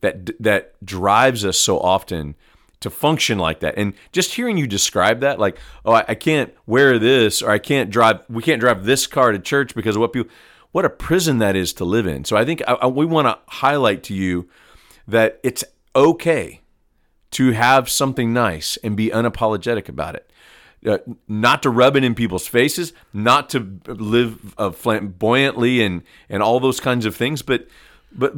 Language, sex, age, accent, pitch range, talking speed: English, male, 40-59, American, 105-135 Hz, 190 wpm